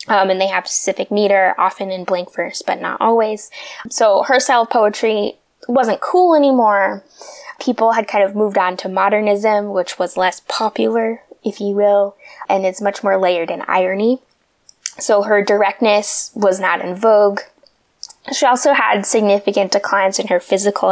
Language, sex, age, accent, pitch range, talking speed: English, female, 10-29, American, 190-230 Hz, 165 wpm